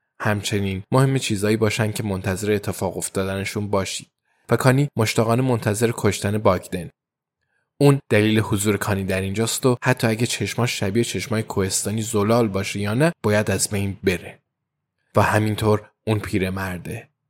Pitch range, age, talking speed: 100-115 Hz, 20-39, 140 wpm